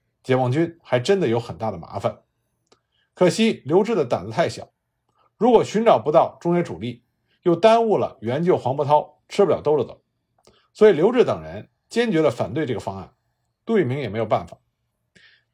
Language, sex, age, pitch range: Chinese, male, 50-69, 130-205 Hz